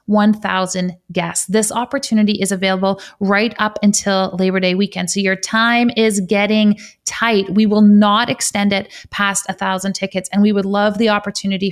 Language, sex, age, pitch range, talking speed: English, female, 30-49, 190-210 Hz, 165 wpm